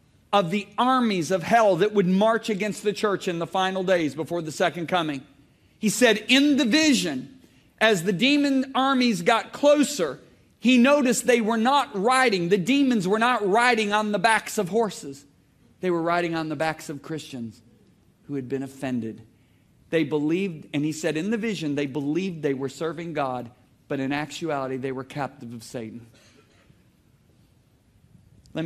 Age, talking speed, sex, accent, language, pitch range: 40-59, 170 wpm, male, American, English, 125-175 Hz